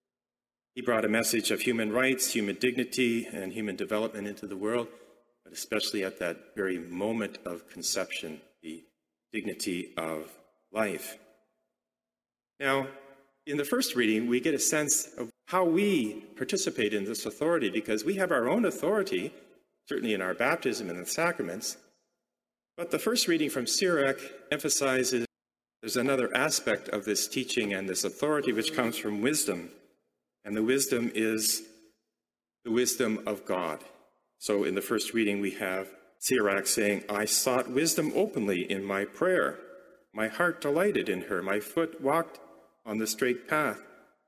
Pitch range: 105-135 Hz